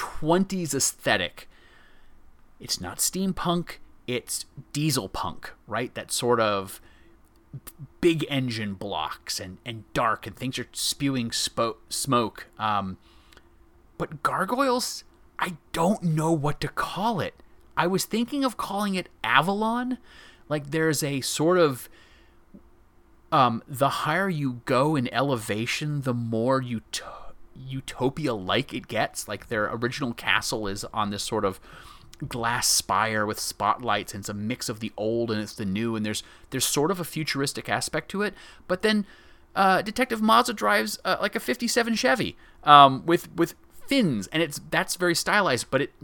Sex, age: male, 30-49